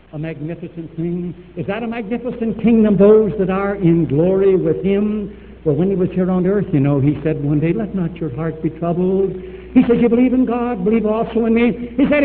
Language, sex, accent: English, male, American